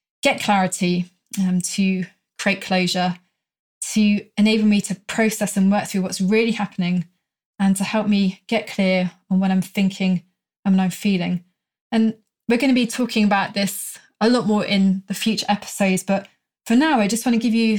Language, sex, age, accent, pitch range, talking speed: English, female, 20-39, British, 185-220 Hz, 185 wpm